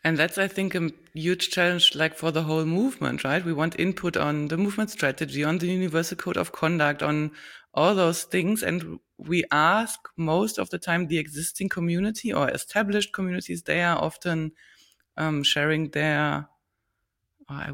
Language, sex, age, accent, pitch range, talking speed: English, female, 20-39, German, 150-180 Hz, 170 wpm